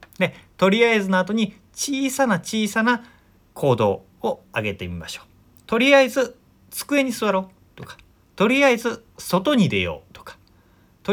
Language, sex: Japanese, male